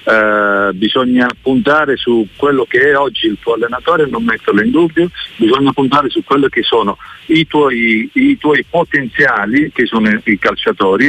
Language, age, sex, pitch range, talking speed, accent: Italian, 50-69, male, 125-170 Hz, 150 wpm, native